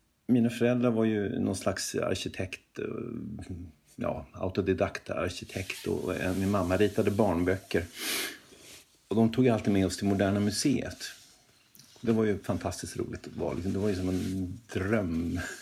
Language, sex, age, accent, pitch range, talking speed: Swedish, male, 50-69, native, 95-120 Hz, 140 wpm